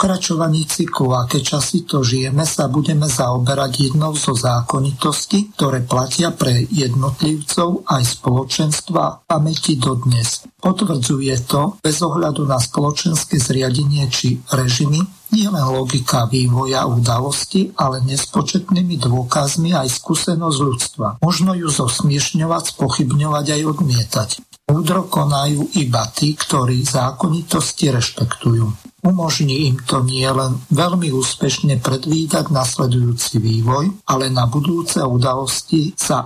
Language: Slovak